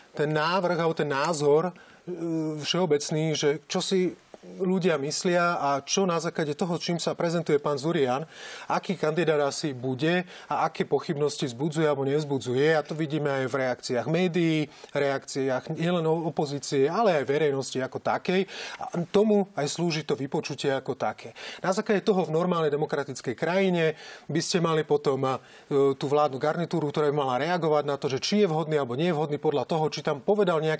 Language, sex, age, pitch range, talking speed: Slovak, male, 30-49, 145-175 Hz, 170 wpm